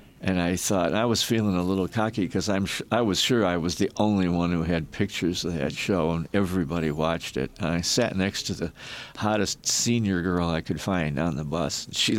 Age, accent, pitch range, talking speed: 60-79, American, 90-115 Hz, 215 wpm